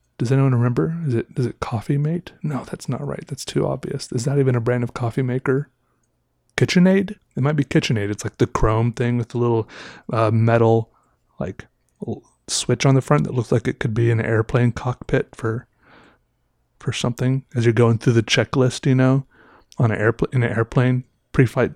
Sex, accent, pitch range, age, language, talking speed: male, American, 115-135 Hz, 30-49, English, 200 wpm